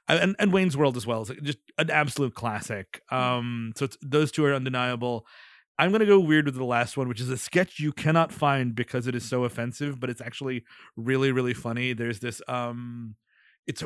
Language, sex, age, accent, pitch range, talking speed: English, male, 30-49, American, 125-170 Hz, 210 wpm